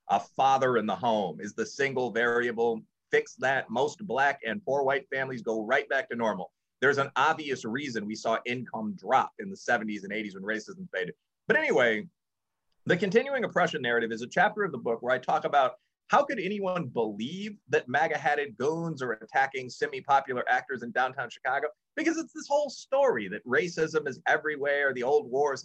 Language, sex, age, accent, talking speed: English, male, 30-49, American, 185 wpm